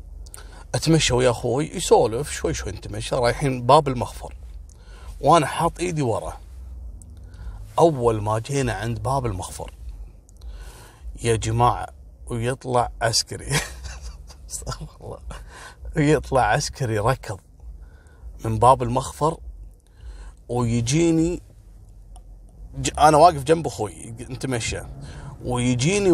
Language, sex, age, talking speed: Arabic, male, 30-49, 90 wpm